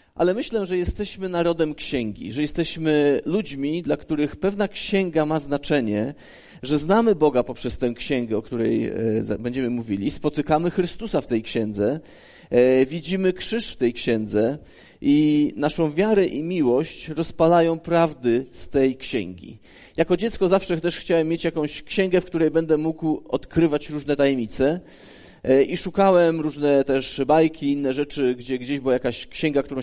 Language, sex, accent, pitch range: Polish, male, native, 135-175 Hz